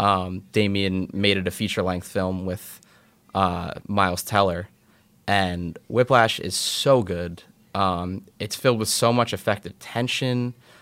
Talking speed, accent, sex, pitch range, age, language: 140 wpm, American, male, 95-110 Hz, 20-39, English